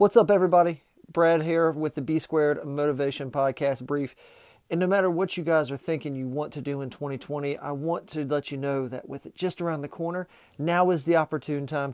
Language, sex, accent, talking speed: English, male, American, 215 wpm